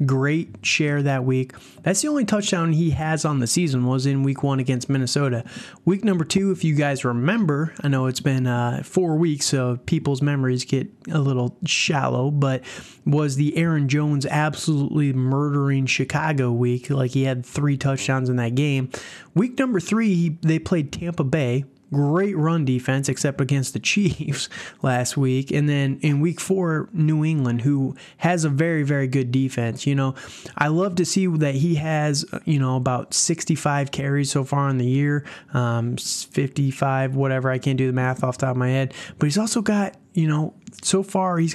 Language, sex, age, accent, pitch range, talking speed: English, male, 20-39, American, 135-165 Hz, 185 wpm